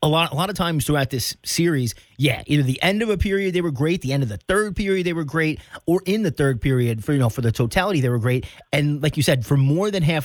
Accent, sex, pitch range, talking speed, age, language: American, male, 120-150 Hz, 295 wpm, 30-49, English